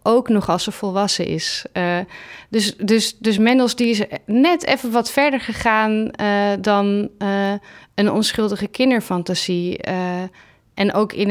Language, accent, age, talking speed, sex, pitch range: Dutch, Dutch, 30-49, 140 wpm, female, 185-215 Hz